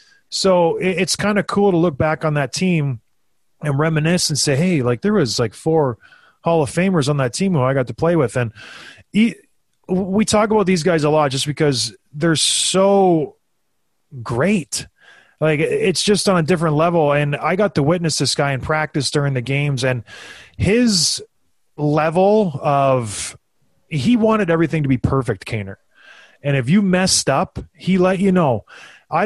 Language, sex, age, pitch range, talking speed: English, male, 30-49, 135-175 Hz, 175 wpm